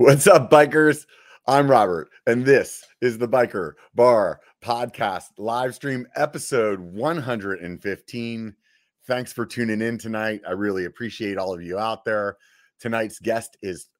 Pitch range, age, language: 95-125 Hz, 30-49, English